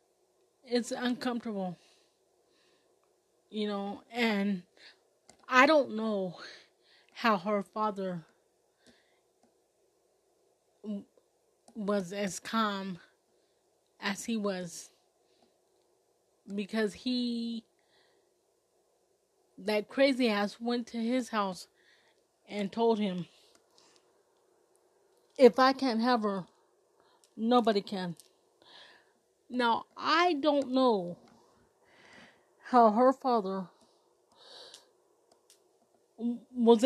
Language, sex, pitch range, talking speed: English, female, 210-305 Hz, 70 wpm